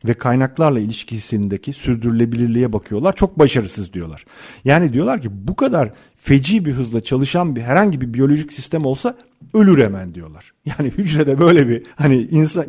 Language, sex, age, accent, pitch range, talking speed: Turkish, male, 50-69, native, 120-185 Hz, 150 wpm